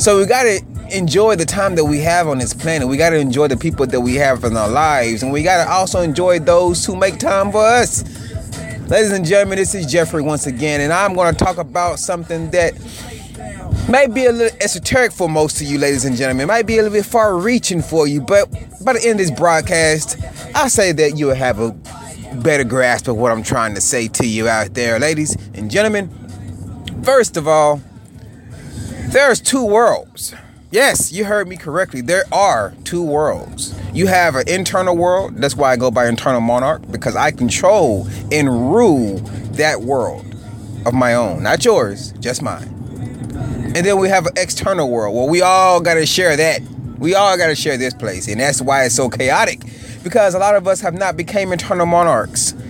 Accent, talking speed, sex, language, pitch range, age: American, 205 wpm, male, English, 125-185 Hz, 30-49